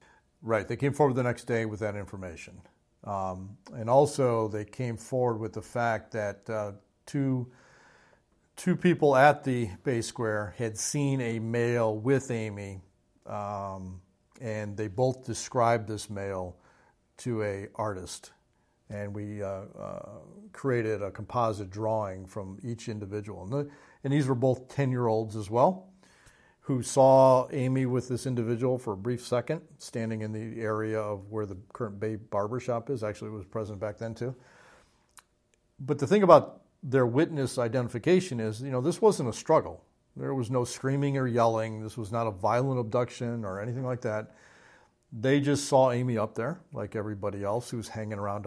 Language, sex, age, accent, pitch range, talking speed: English, male, 50-69, American, 105-130 Hz, 165 wpm